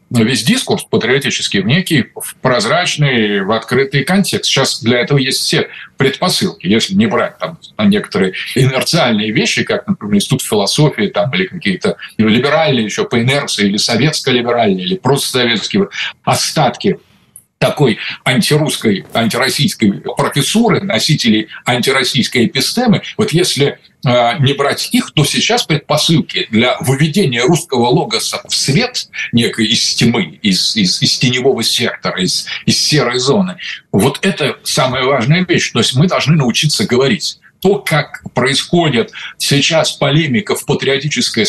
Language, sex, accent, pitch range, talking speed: Russian, male, native, 130-190 Hz, 130 wpm